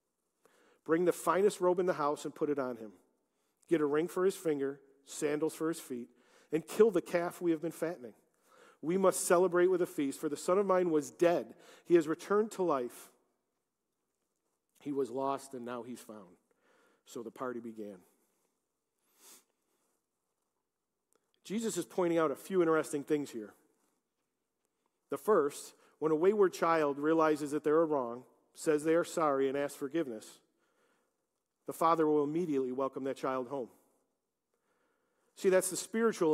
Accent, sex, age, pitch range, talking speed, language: American, male, 40-59, 140-180 Hz, 160 wpm, English